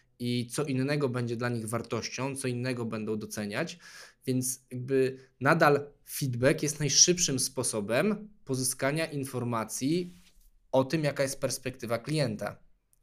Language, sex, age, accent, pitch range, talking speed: Polish, male, 20-39, native, 120-145 Hz, 120 wpm